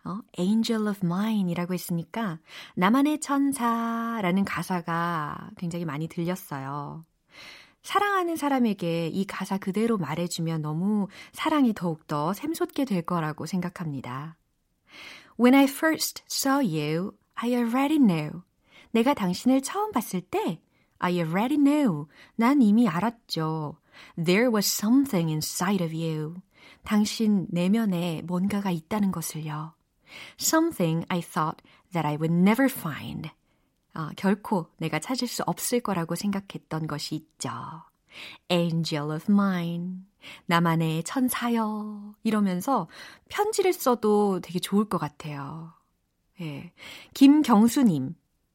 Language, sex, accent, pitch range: Korean, female, native, 165-230 Hz